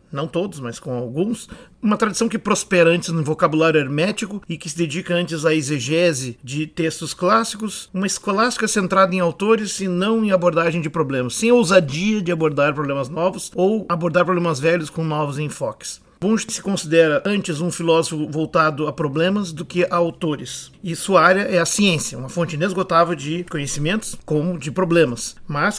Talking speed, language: 175 wpm, Portuguese